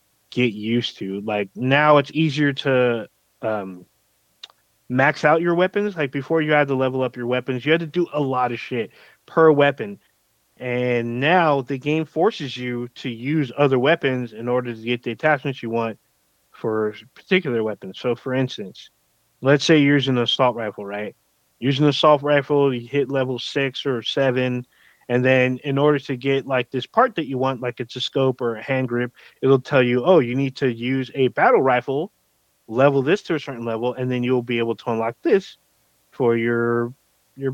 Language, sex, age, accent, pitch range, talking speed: English, male, 20-39, American, 120-145 Hz, 195 wpm